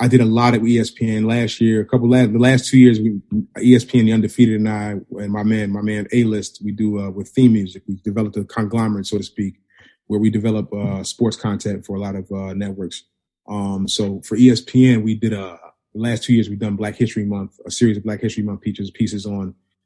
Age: 20-39